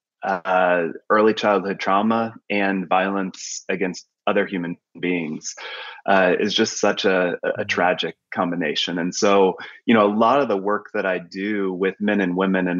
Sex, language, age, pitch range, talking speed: male, English, 20-39, 90-110 Hz, 165 wpm